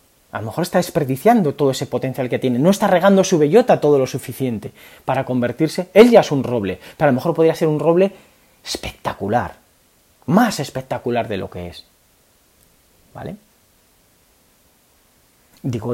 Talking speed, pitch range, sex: 160 wpm, 115-170 Hz, male